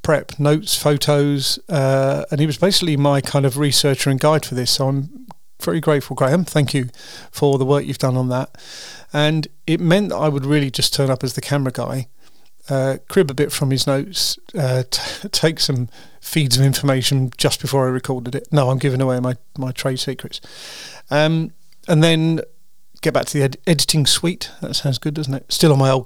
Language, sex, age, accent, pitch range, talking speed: English, male, 40-59, British, 135-155 Hz, 205 wpm